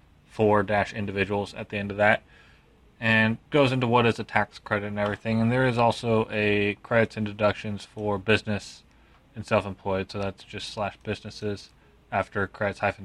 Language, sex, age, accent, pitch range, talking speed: English, male, 20-39, American, 105-125 Hz, 175 wpm